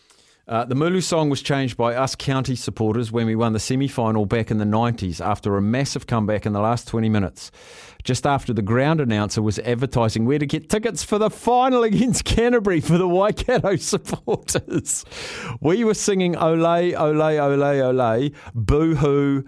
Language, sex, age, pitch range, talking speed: English, male, 50-69, 115-160 Hz, 175 wpm